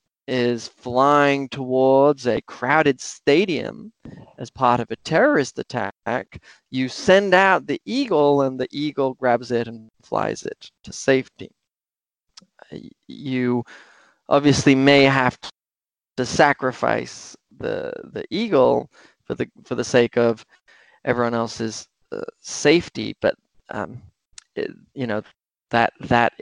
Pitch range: 125-165 Hz